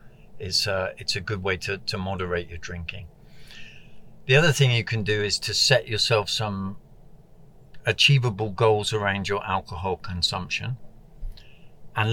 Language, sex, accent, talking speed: English, male, British, 140 wpm